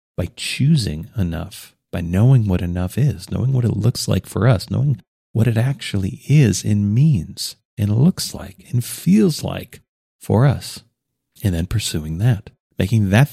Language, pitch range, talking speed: English, 90-120 Hz, 160 wpm